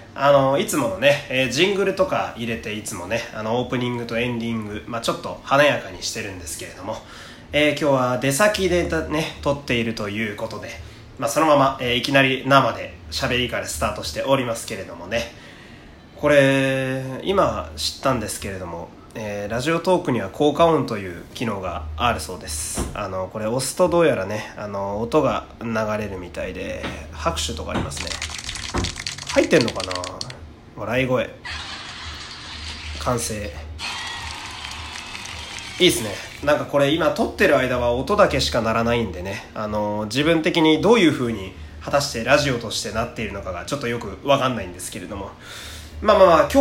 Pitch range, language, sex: 95-135 Hz, Japanese, male